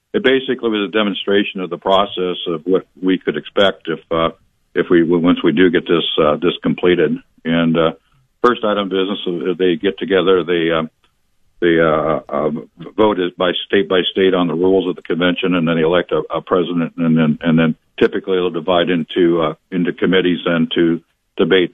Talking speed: 195 wpm